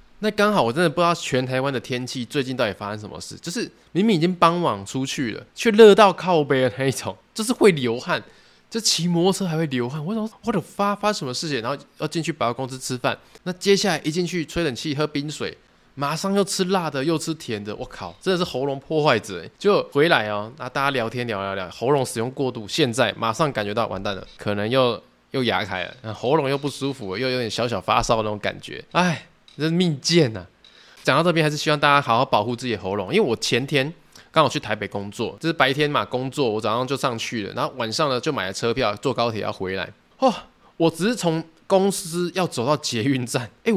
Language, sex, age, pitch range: Chinese, male, 20-39, 120-170 Hz